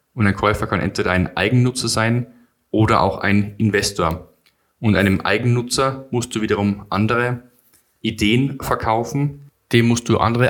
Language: German